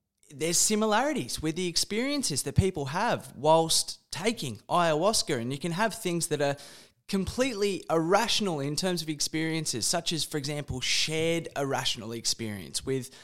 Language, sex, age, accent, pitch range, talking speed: English, male, 20-39, Australian, 145-185 Hz, 145 wpm